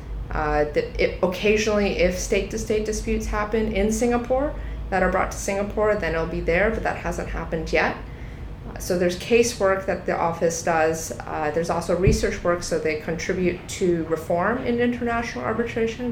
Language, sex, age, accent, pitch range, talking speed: English, female, 30-49, American, 160-210 Hz, 170 wpm